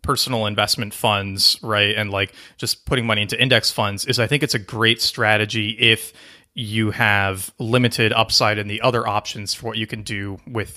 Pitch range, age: 105-125 Hz, 30-49